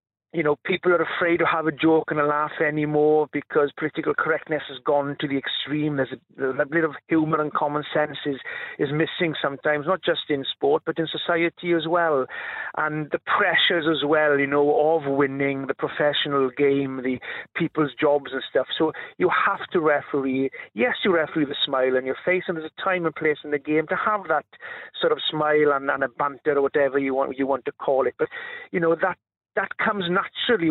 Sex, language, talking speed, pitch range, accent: male, English, 210 wpm, 140-175 Hz, British